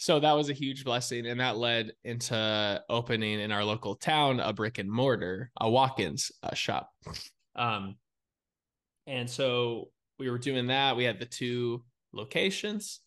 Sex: male